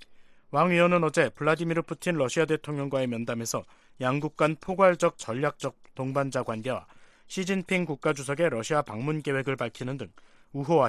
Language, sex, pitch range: Korean, male, 130-170 Hz